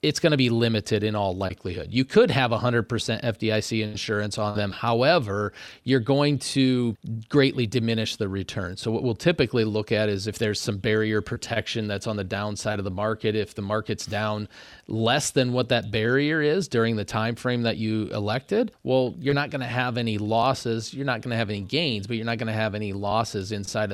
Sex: male